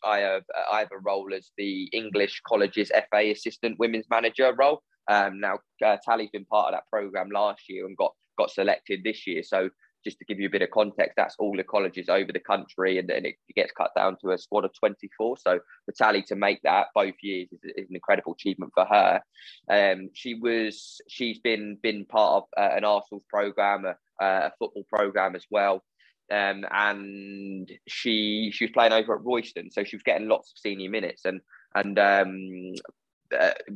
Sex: male